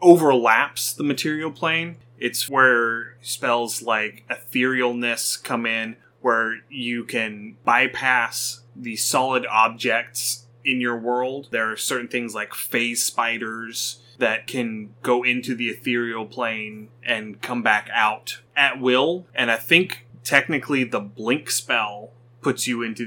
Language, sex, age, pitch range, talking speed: English, male, 20-39, 115-130 Hz, 135 wpm